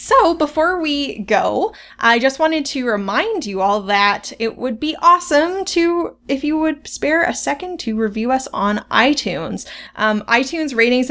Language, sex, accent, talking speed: English, female, American, 170 wpm